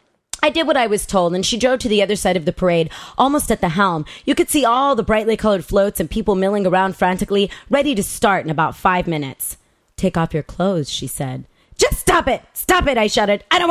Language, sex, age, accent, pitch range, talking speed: English, female, 30-49, American, 175-235 Hz, 240 wpm